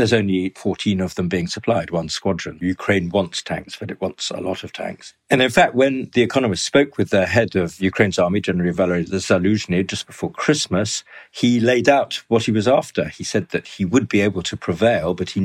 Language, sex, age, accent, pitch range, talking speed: English, male, 50-69, British, 90-110 Hz, 220 wpm